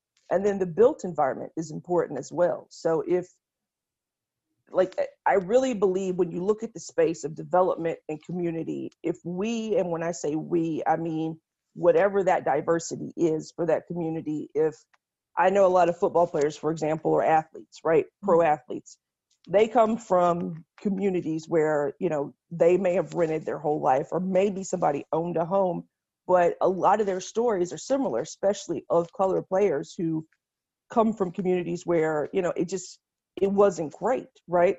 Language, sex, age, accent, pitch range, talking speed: English, female, 40-59, American, 160-195 Hz, 175 wpm